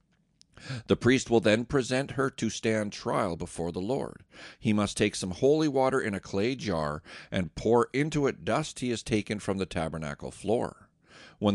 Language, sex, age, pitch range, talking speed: English, male, 50-69, 90-125 Hz, 180 wpm